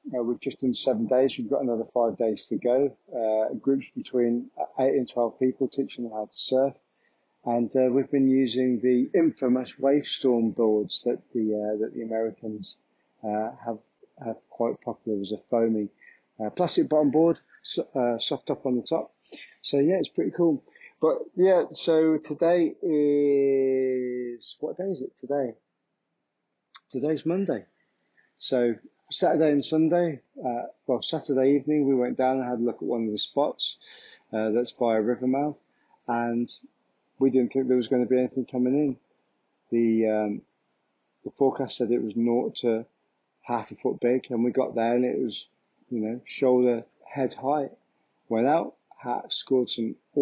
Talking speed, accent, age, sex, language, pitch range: 175 wpm, British, 40-59, male, English, 115-140 Hz